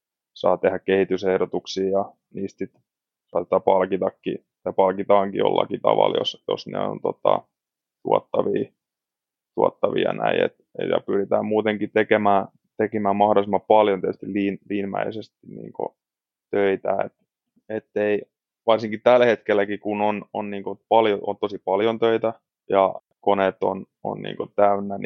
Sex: male